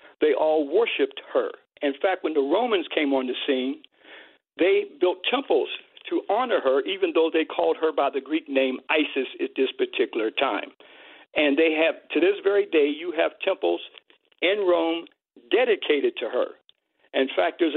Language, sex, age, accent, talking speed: English, male, 60-79, American, 170 wpm